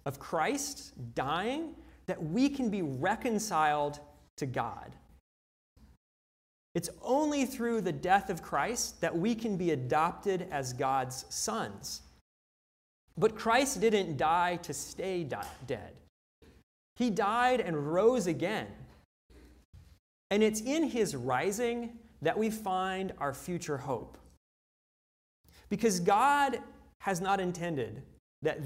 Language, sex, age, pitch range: English, male, 30-49, 125-200 Hz